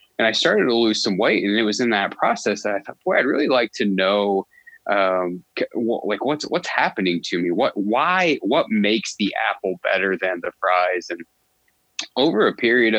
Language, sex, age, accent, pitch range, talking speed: English, male, 20-39, American, 90-105 Hz, 200 wpm